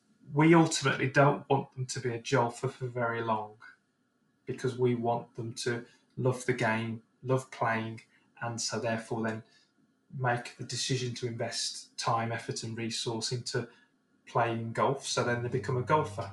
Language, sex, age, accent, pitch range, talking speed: English, male, 20-39, British, 115-135 Hz, 160 wpm